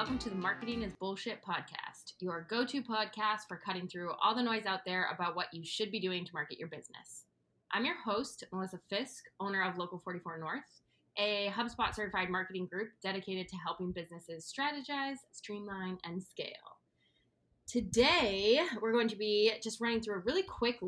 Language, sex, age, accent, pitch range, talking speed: English, female, 20-39, American, 175-215 Hz, 175 wpm